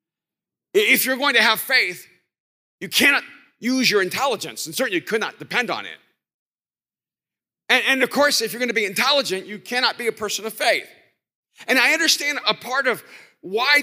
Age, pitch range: 40-59, 225-275 Hz